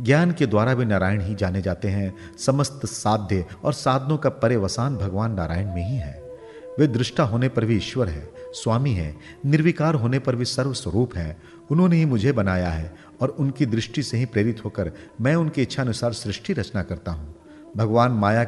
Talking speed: 190 wpm